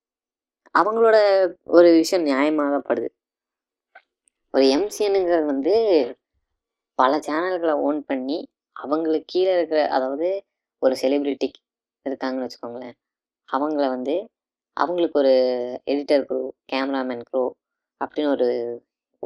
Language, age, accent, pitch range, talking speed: Tamil, 20-39, native, 130-160 Hz, 90 wpm